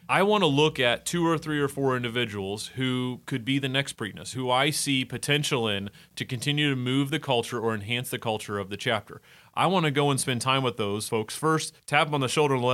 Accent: American